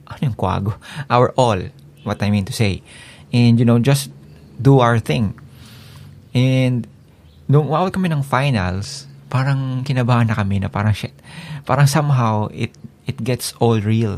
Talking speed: 150 wpm